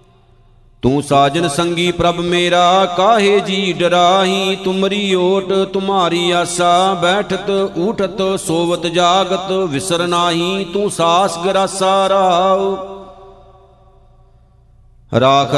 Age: 50-69